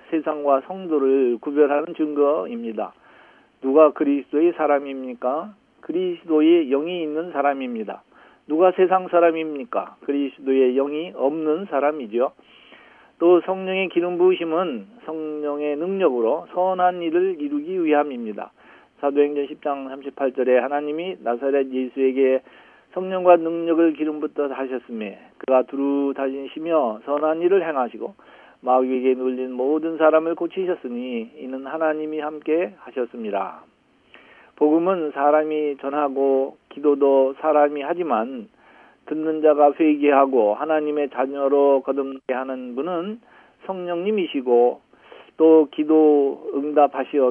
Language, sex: Korean, male